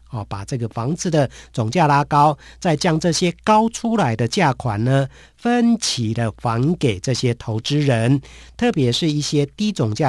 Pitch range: 120-160 Hz